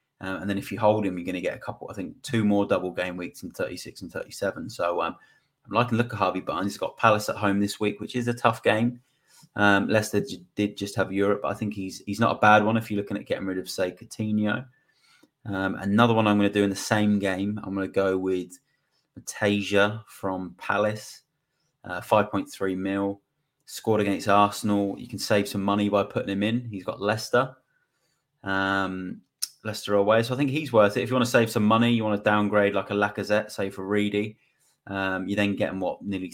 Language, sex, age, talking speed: English, male, 30-49, 230 wpm